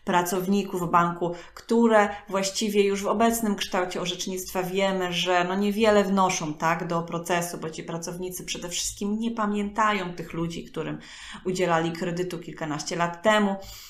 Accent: native